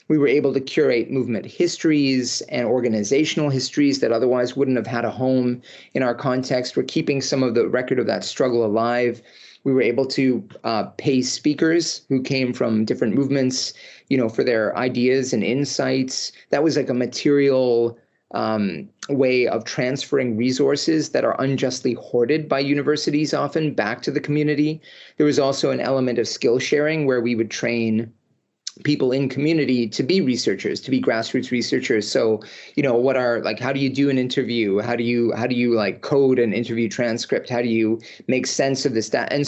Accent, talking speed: American, 190 wpm